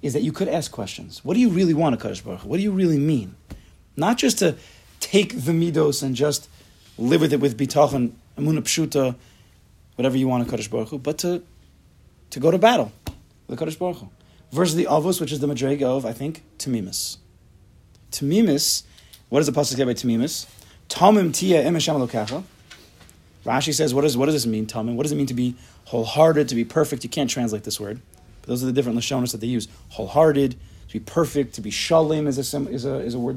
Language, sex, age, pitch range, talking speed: English, male, 30-49, 110-155 Hz, 215 wpm